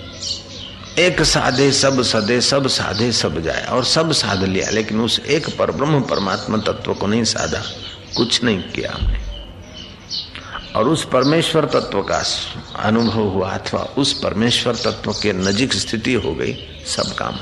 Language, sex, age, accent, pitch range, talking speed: Hindi, male, 60-79, native, 90-130 Hz, 135 wpm